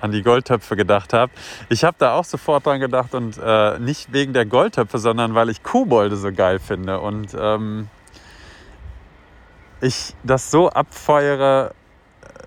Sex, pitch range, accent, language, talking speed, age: male, 95-115 Hz, German, German, 150 wpm, 30-49